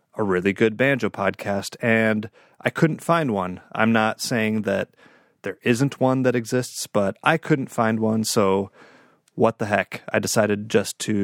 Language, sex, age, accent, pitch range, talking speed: English, male, 30-49, American, 95-115 Hz, 170 wpm